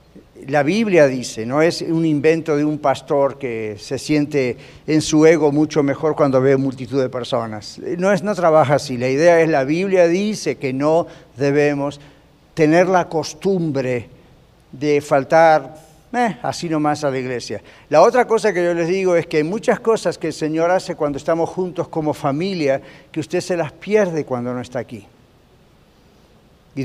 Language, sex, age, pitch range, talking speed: Spanish, male, 50-69, 145-190 Hz, 175 wpm